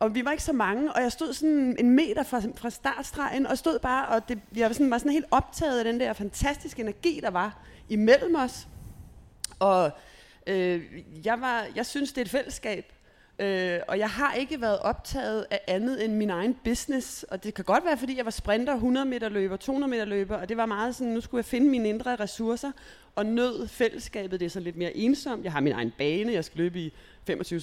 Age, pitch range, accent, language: 30-49, 195-265 Hz, native, Danish